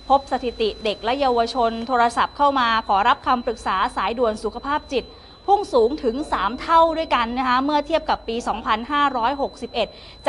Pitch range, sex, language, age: 175-250 Hz, female, Thai, 20-39